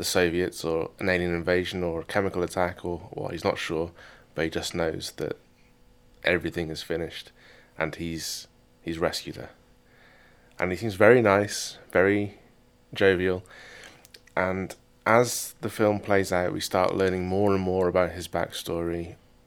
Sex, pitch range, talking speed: male, 85-100 Hz, 155 wpm